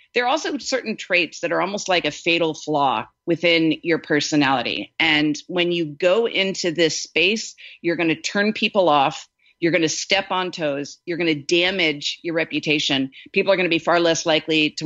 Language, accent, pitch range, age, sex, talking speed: English, American, 160-215 Hz, 40-59, female, 200 wpm